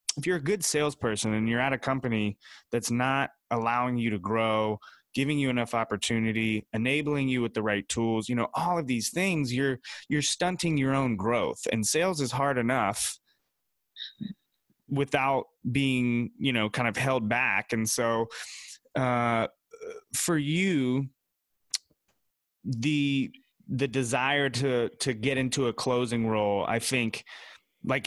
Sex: male